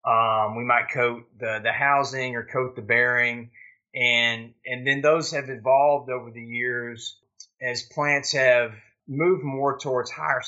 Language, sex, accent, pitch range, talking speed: English, male, American, 120-140 Hz, 155 wpm